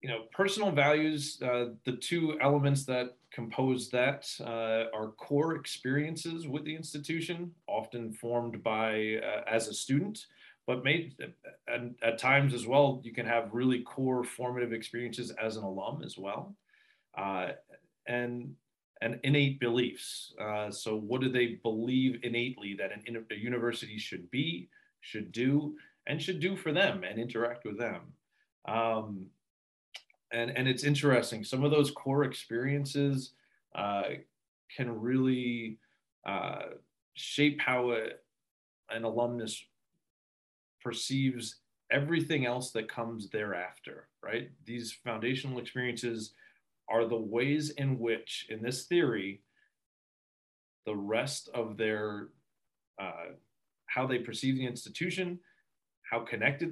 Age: 30-49